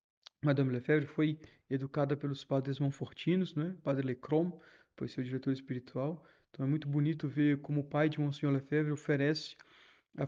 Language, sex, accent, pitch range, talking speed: Portuguese, male, Brazilian, 135-160 Hz, 160 wpm